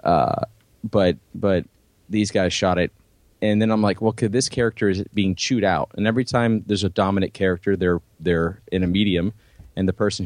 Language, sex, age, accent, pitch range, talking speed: English, male, 30-49, American, 90-110 Hz, 200 wpm